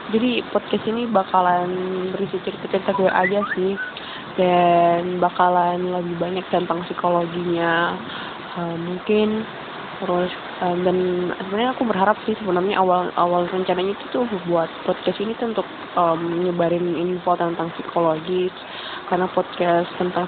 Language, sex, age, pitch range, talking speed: Malay, female, 20-39, 175-190 Hz, 115 wpm